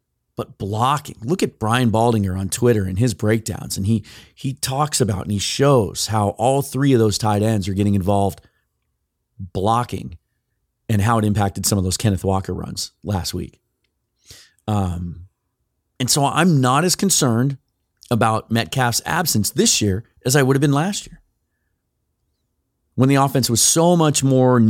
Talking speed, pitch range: 165 wpm, 100-130 Hz